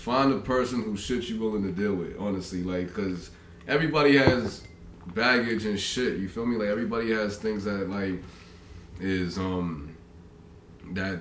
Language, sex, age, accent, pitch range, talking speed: English, male, 20-39, American, 90-120 Hz, 160 wpm